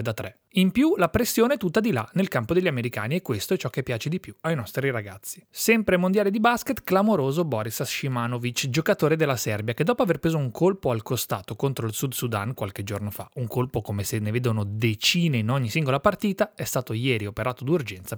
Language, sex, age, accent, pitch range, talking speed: Italian, male, 30-49, native, 115-180 Hz, 220 wpm